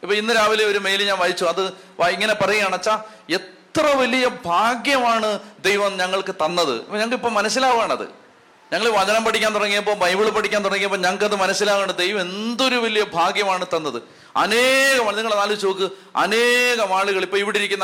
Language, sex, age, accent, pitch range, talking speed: Malayalam, male, 40-59, native, 180-215 Hz, 145 wpm